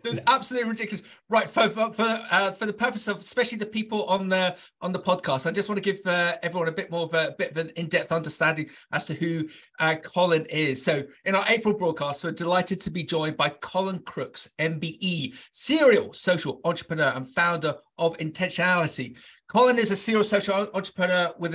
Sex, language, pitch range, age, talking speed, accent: male, English, 160-195 Hz, 40-59, 200 wpm, British